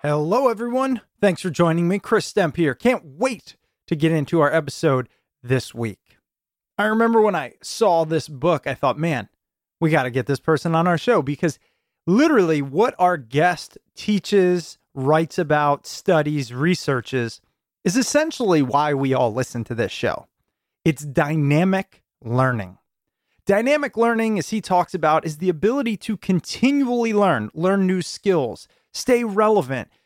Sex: male